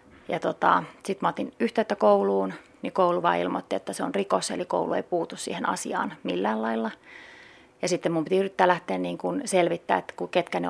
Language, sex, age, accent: Finnish, female, 30-49, native